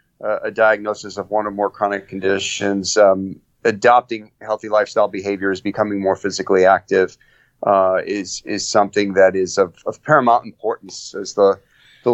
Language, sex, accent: English, male, American